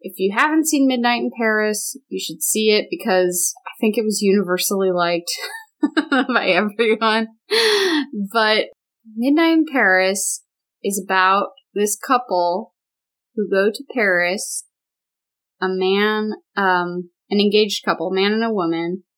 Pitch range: 185-235 Hz